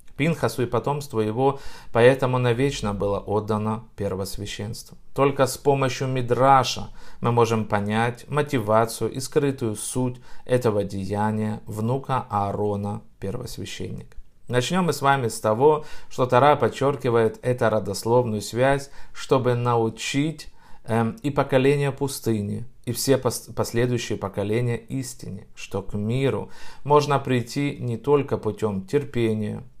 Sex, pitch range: male, 110-135 Hz